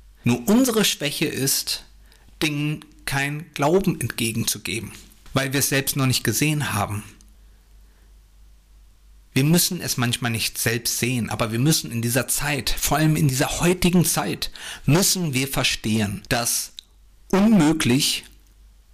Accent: German